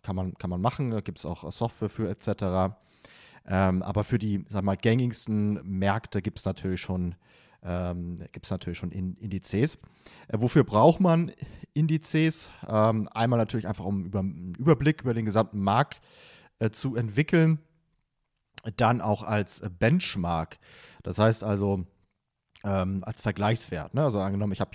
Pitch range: 95-120 Hz